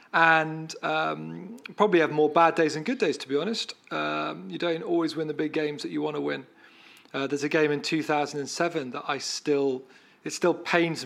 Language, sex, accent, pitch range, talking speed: English, male, British, 140-160 Hz, 200 wpm